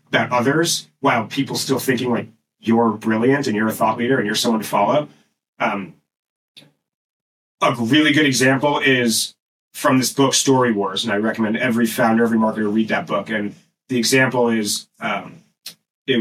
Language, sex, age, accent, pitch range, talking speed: English, male, 30-49, American, 110-130 Hz, 170 wpm